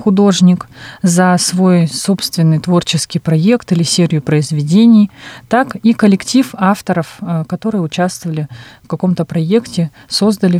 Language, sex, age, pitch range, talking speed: Russian, female, 30-49, 170-205 Hz, 110 wpm